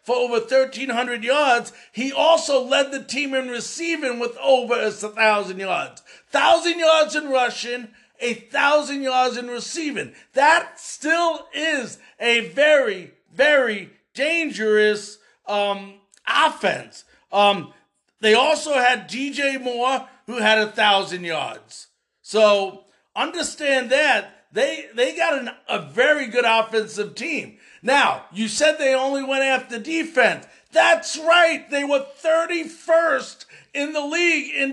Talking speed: 125 wpm